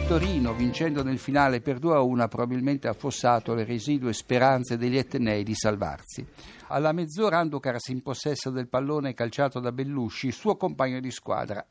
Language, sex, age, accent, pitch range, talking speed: Italian, male, 60-79, native, 120-165 Hz, 150 wpm